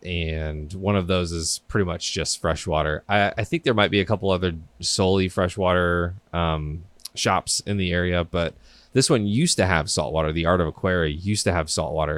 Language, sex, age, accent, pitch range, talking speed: English, male, 20-39, American, 80-105 Hz, 195 wpm